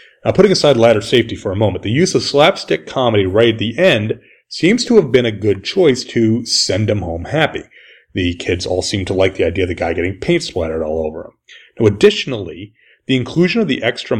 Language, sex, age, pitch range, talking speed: English, male, 30-49, 105-165 Hz, 225 wpm